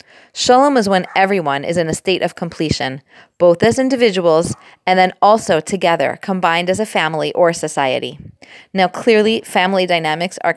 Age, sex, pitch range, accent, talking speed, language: 30-49, female, 170-215 Hz, American, 160 wpm, English